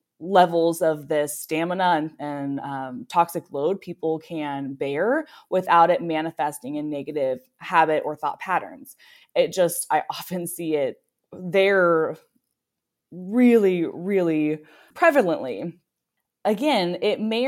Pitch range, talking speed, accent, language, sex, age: 150-180 Hz, 115 wpm, American, English, female, 10-29